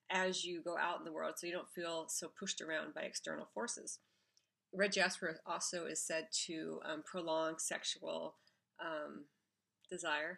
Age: 40-59